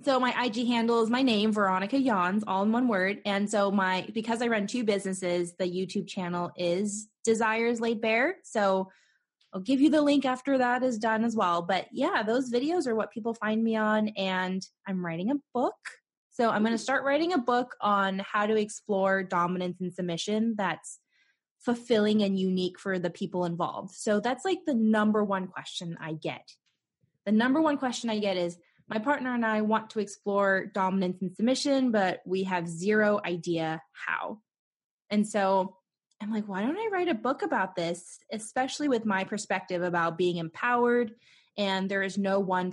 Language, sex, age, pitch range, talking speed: English, female, 20-39, 180-240 Hz, 190 wpm